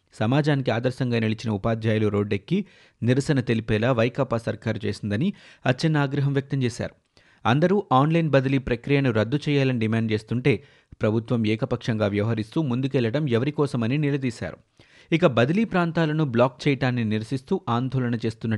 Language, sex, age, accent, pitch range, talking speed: Telugu, male, 30-49, native, 115-140 Hz, 115 wpm